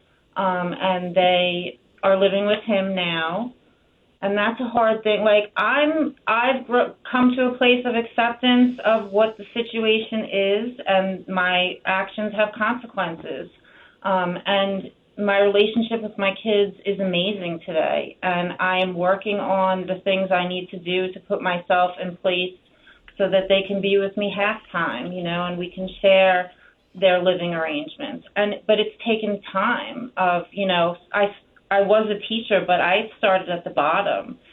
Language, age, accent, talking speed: English, 30-49, American, 165 wpm